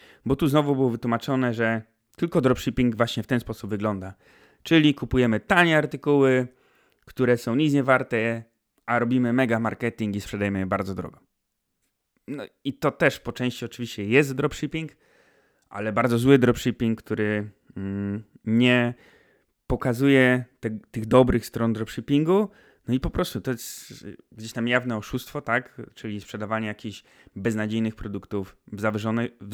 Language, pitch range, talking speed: Polish, 110-130 Hz, 140 wpm